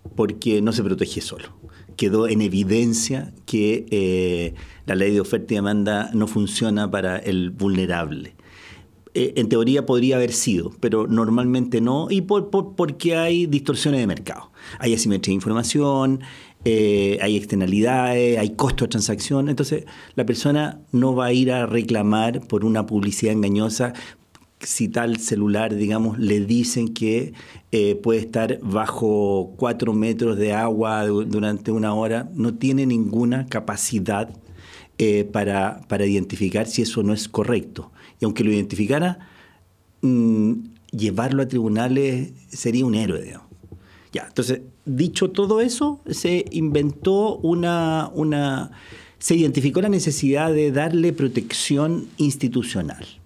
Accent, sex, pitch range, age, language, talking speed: Argentinian, male, 105-135 Hz, 40-59, Spanish, 135 wpm